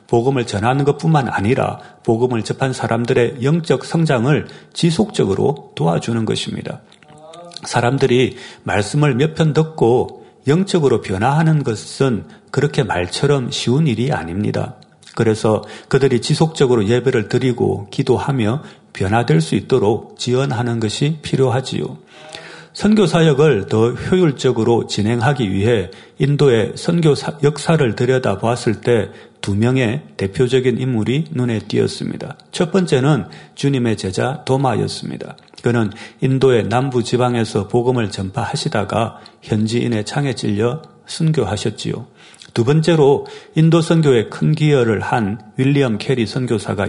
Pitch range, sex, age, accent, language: 115-145 Hz, male, 40-59, native, Korean